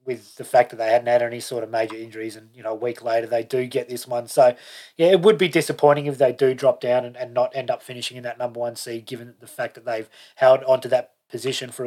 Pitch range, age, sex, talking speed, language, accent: 130-155 Hz, 20-39, male, 280 wpm, English, Australian